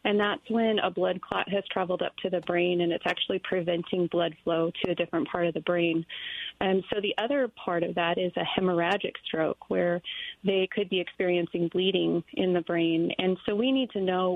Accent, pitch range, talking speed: American, 175-195 Hz, 215 wpm